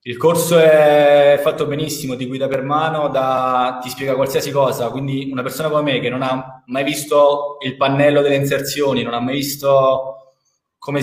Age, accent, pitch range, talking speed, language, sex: 20-39, native, 135-155 Hz, 180 wpm, Italian, male